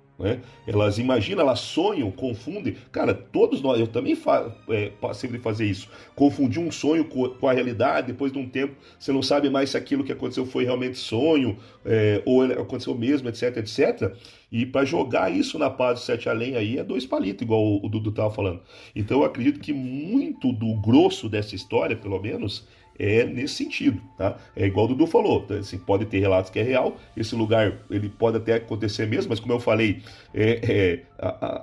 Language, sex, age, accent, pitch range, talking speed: Portuguese, male, 40-59, Brazilian, 110-135 Hz, 190 wpm